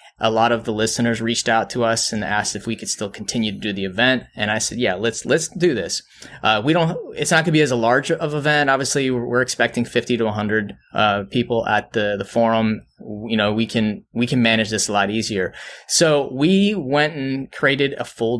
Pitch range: 110-130 Hz